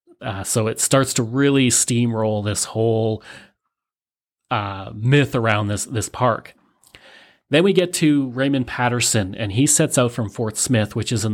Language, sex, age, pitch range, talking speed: English, male, 30-49, 110-130 Hz, 165 wpm